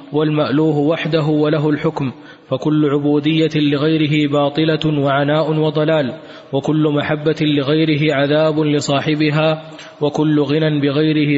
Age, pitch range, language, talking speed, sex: 20-39, 150-155 Hz, Arabic, 95 wpm, male